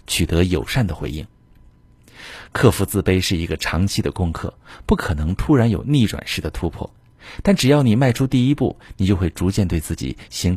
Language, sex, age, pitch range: Chinese, male, 50-69, 90-115 Hz